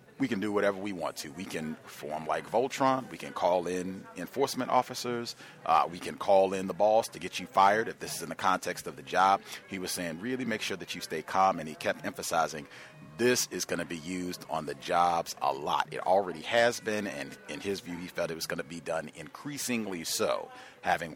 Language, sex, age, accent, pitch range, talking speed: English, male, 40-59, American, 90-120 Hz, 235 wpm